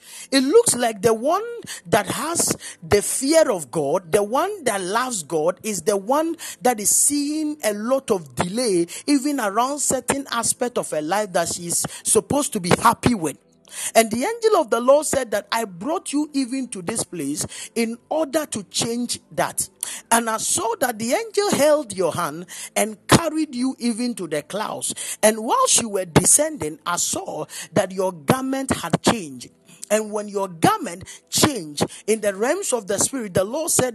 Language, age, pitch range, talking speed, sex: English, 40-59, 195-280 Hz, 180 wpm, male